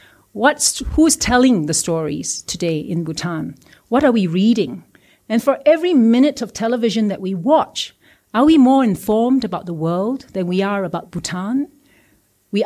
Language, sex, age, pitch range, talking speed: English, female, 40-59, 180-235 Hz, 160 wpm